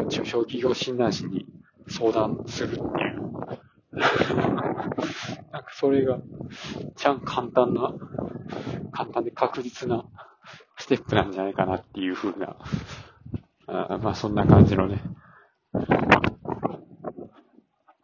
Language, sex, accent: Japanese, male, native